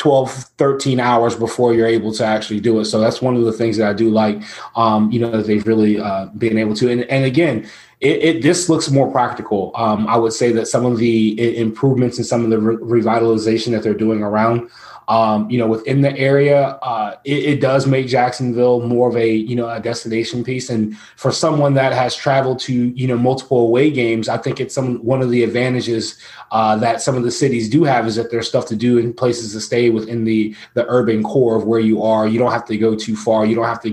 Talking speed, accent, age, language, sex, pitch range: 235 wpm, American, 20-39, English, male, 110-125 Hz